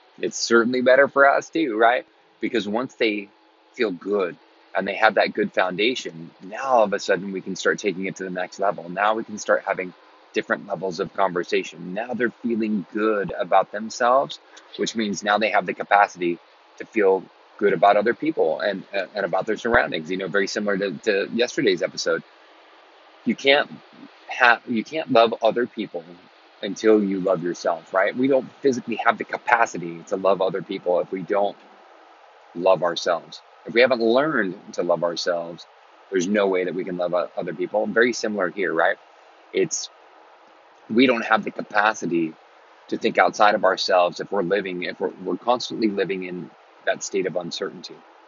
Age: 30-49